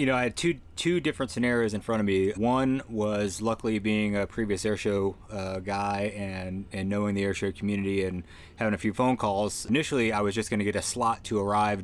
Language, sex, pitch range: English, male, 100-110 Hz